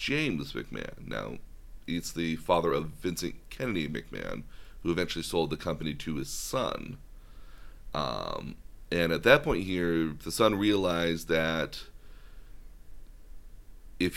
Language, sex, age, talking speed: English, male, 30-49, 125 wpm